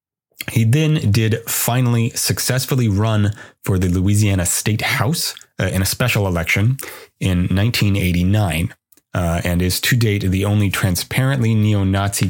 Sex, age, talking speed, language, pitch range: male, 30-49, 130 wpm, English, 90-115 Hz